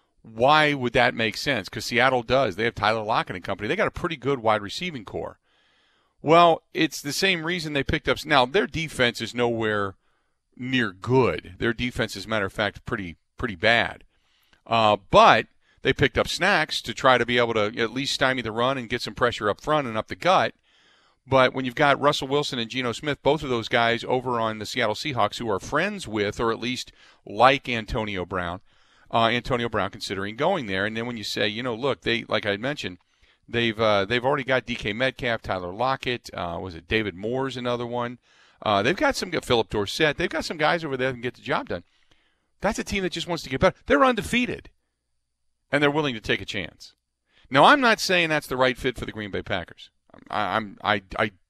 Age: 40-59